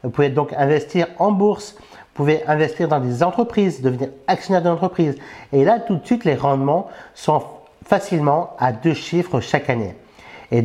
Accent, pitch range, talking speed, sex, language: French, 135-175 Hz, 175 wpm, male, French